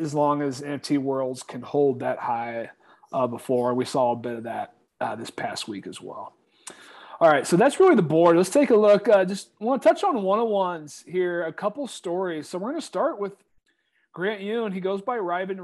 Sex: male